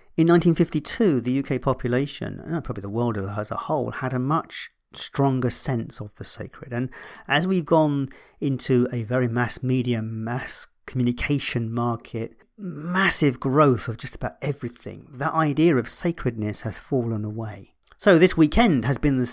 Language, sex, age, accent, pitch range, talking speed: English, male, 40-59, British, 115-145 Hz, 160 wpm